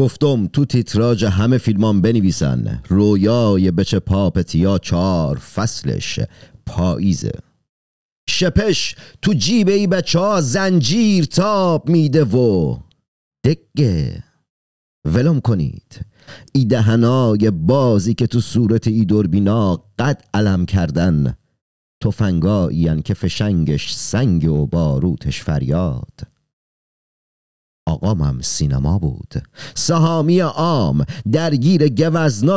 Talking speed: 90 wpm